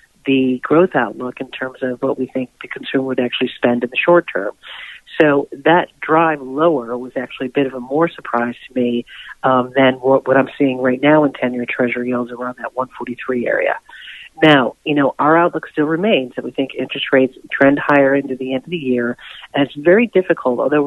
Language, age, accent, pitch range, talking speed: English, 40-59, American, 125-150 Hz, 210 wpm